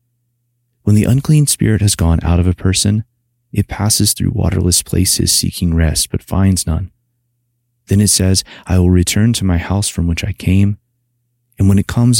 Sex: male